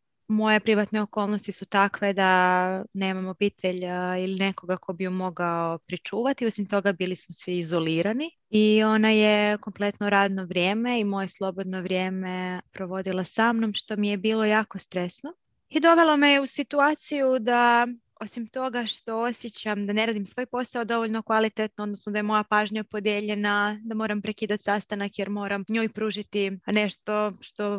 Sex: female